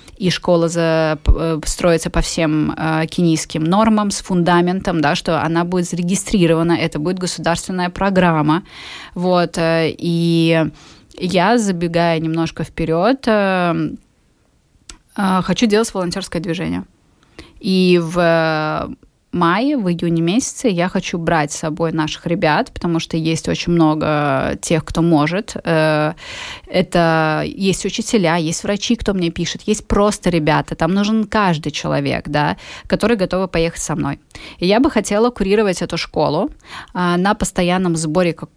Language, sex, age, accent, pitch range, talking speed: Russian, female, 20-39, native, 160-185 Hz, 135 wpm